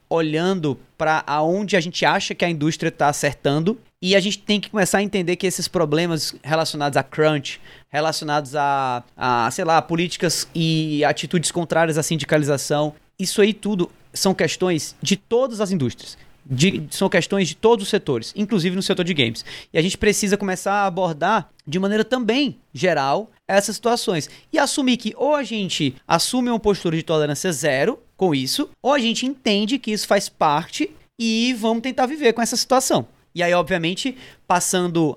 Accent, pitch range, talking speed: Brazilian, 155-210 Hz, 175 wpm